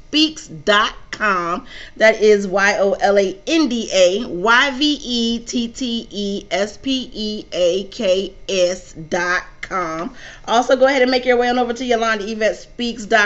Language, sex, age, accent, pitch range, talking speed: English, female, 30-49, American, 195-245 Hz, 75 wpm